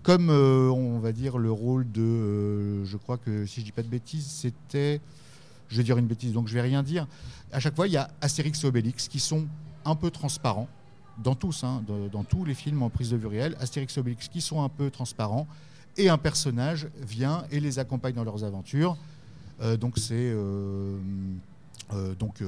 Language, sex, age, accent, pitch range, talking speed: French, male, 50-69, French, 110-150 Hz, 220 wpm